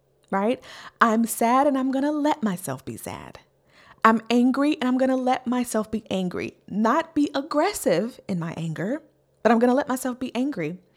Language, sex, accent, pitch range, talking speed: English, female, American, 195-255 Hz, 190 wpm